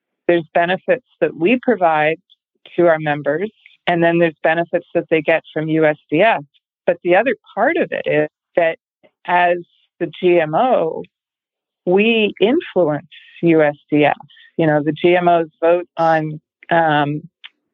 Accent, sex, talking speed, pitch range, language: American, female, 130 wpm, 160-210 Hz, English